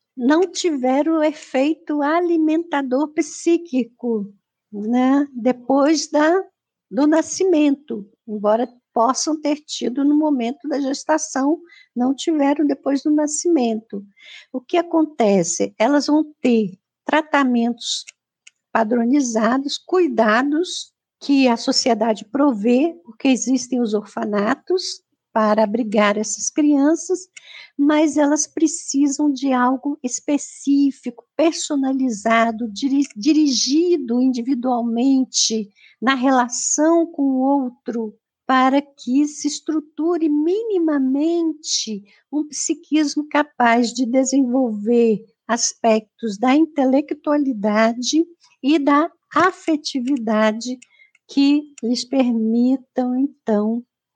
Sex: female